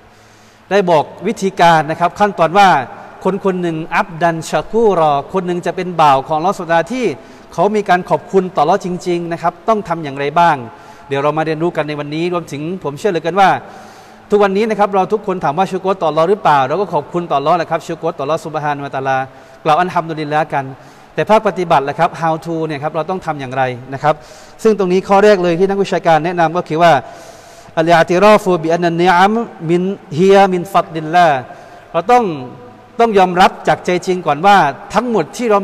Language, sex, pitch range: Thai, male, 160-195 Hz